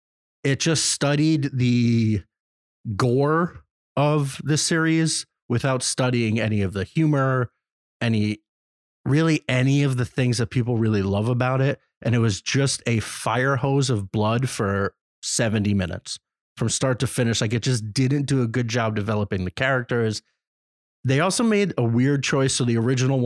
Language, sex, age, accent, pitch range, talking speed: English, male, 30-49, American, 110-140 Hz, 160 wpm